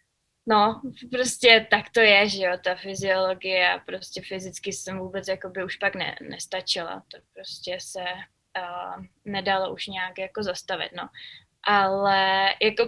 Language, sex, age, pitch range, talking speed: English, female, 20-39, 200-235 Hz, 140 wpm